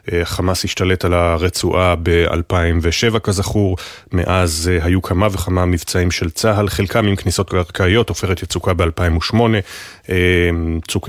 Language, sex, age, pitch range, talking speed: Hebrew, male, 30-49, 90-100 Hz, 115 wpm